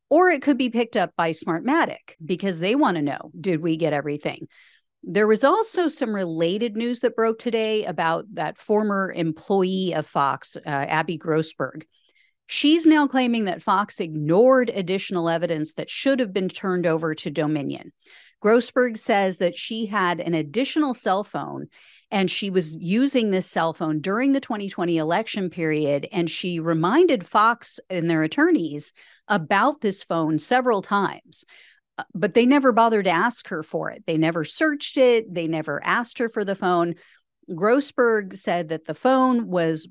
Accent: American